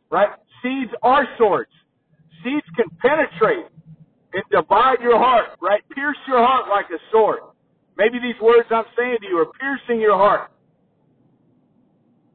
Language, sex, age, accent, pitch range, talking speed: English, male, 50-69, American, 165-230 Hz, 140 wpm